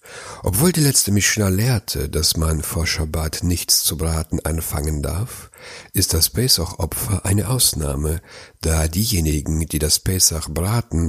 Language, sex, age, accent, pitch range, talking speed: German, male, 60-79, German, 85-110 Hz, 130 wpm